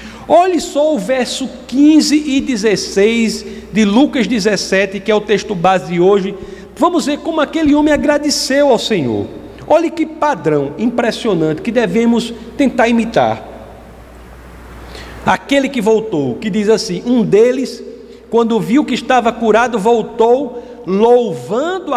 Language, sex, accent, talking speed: Portuguese, male, Brazilian, 130 wpm